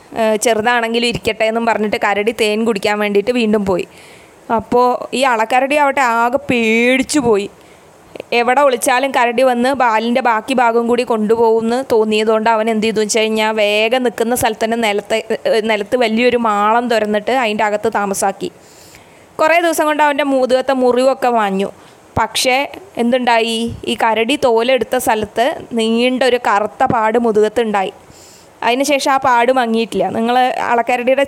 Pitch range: 220-260 Hz